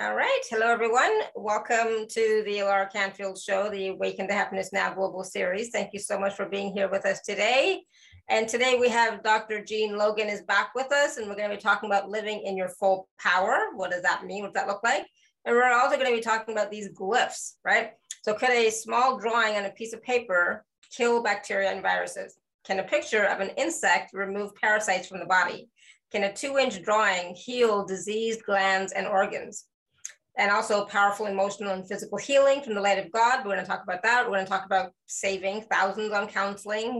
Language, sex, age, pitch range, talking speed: English, female, 30-49, 195-225 Hz, 210 wpm